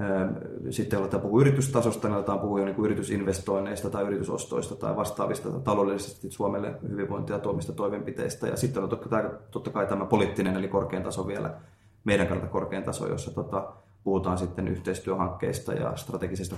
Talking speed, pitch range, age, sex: 145 wpm, 95-110 Hz, 20-39, male